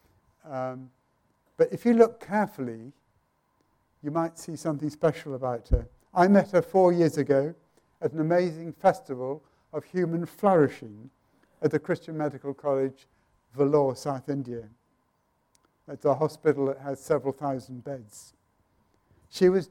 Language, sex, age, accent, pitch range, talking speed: English, male, 60-79, British, 130-165 Hz, 135 wpm